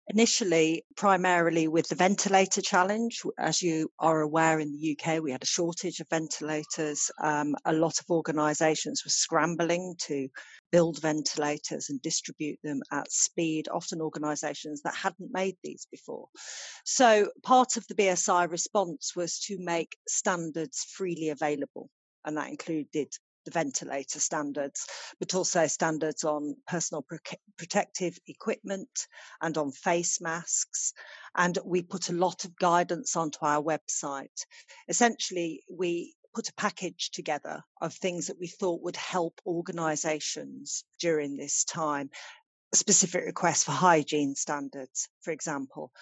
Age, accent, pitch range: 40-59, British, 155-190 Hz